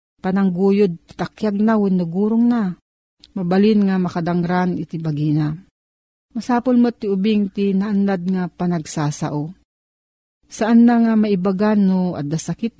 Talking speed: 110 wpm